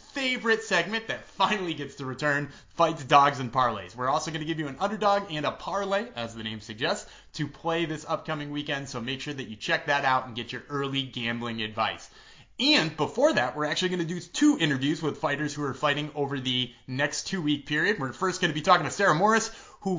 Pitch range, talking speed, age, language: 135-180 Hz, 230 wpm, 30-49, English